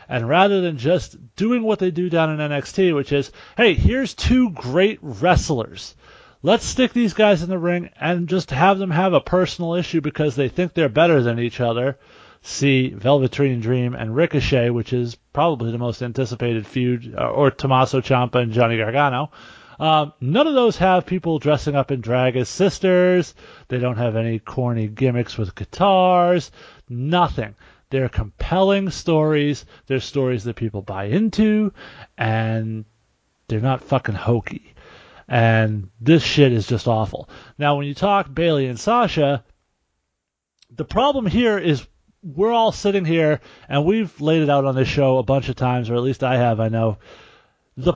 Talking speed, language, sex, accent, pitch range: 170 wpm, English, male, American, 120-180 Hz